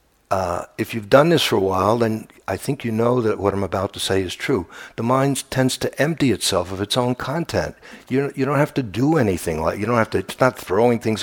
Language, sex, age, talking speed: English, male, 60-79, 250 wpm